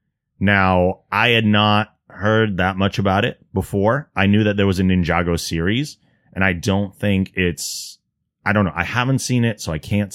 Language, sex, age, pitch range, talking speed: English, male, 30-49, 85-110 Hz, 195 wpm